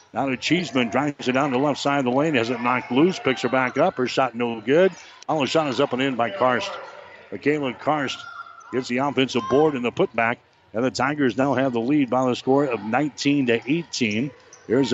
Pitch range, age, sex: 130-150 Hz, 60-79, male